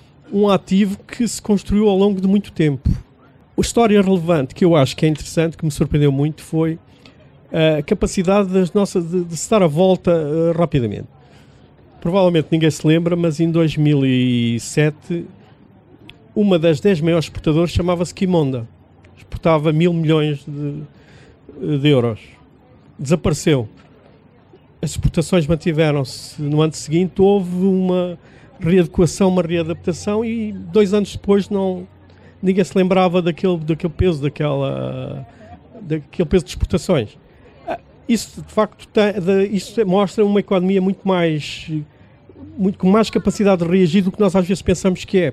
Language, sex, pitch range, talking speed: Portuguese, male, 150-190 Hz, 130 wpm